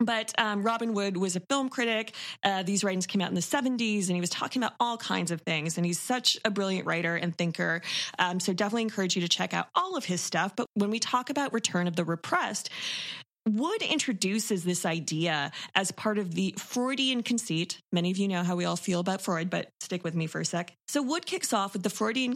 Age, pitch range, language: 20-39, 175-230 Hz, English